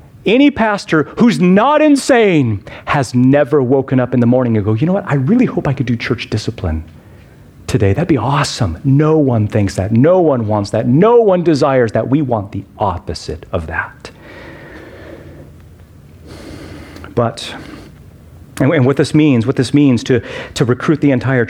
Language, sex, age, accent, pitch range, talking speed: English, male, 40-59, American, 115-175 Hz, 165 wpm